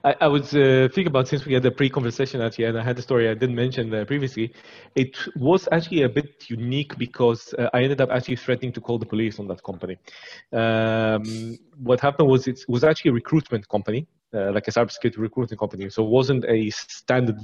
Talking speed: 215 wpm